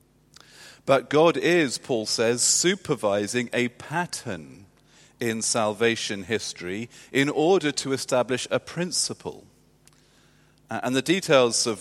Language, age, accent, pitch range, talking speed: English, 40-59, British, 100-125 Hz, 105 wpm